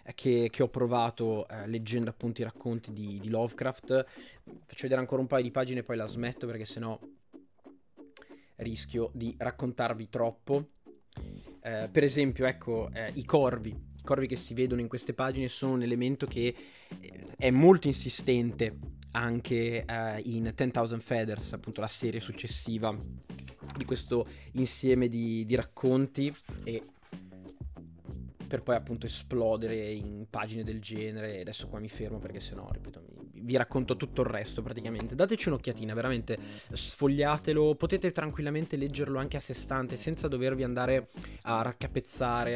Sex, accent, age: male, native, 20-39